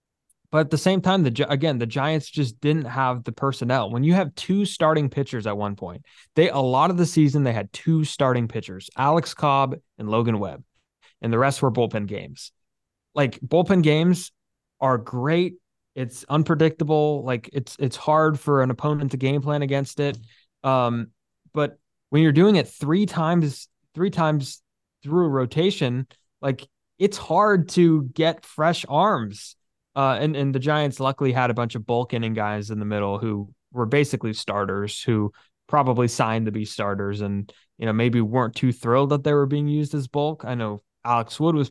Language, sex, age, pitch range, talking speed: English, male, 20-39, 110-150 Hz, 185 wpm